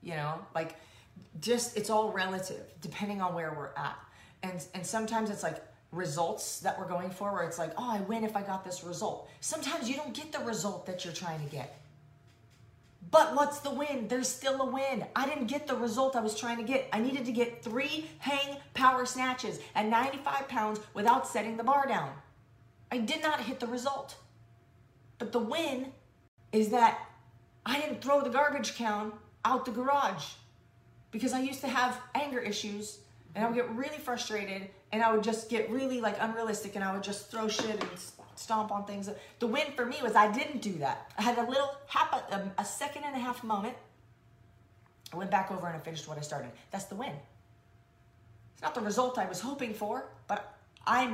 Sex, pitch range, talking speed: female, 165-255 Hz, 200 wpm